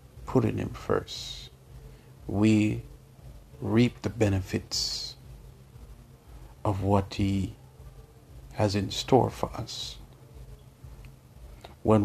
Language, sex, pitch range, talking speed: English, male, 100-120 Hz, 80 wpm